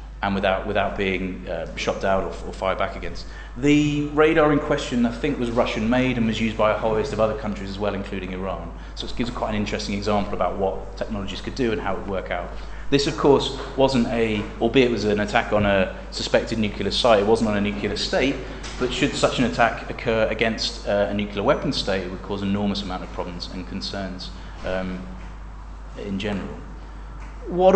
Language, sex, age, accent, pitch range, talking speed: French, male, 30-49, British, 100-125 Hz, 215 wpm